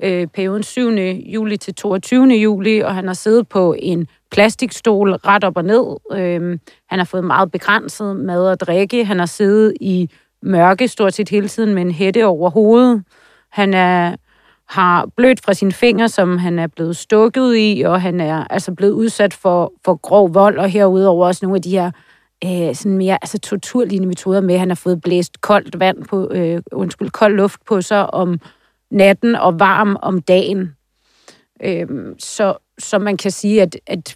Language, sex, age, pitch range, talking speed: Danish, female, 40-59, 180-210 Hz, 180 wpm